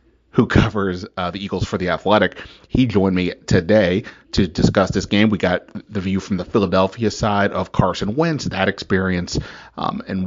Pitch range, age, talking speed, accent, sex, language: 95-105 Hz, 30-49, 180 wpm, American, male, English